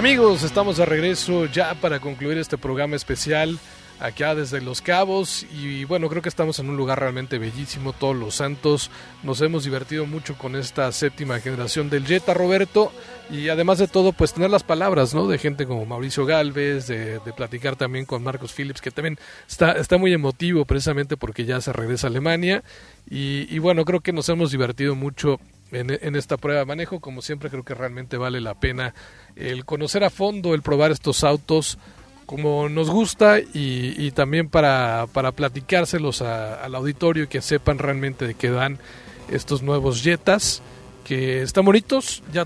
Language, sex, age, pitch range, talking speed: English, male, 40-59, 130-160 Hz, 180 wpm